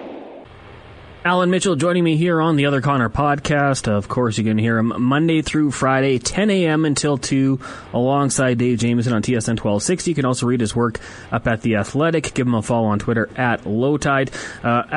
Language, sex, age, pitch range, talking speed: English, male, 20-39, 115-140 Hz, 195 wpm